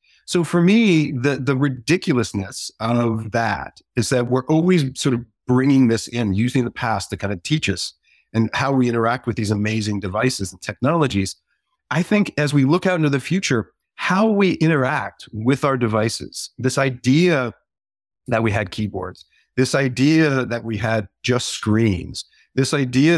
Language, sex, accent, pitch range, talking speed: English, male, American, 110-145 Hz, 170 wpm